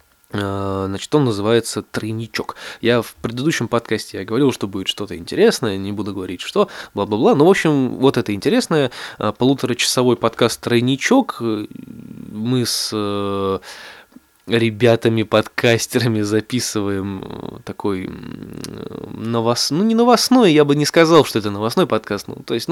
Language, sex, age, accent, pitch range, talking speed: Russian, male, 20-39, native, 105-135 Hz, 130 wpm